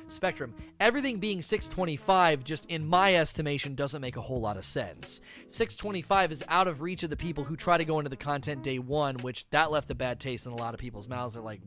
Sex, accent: male, American